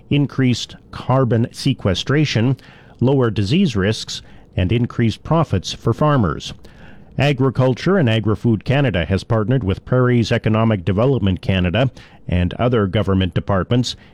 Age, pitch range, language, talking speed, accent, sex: 50-69, 105-130 Hz, English, 110 wpm, American, male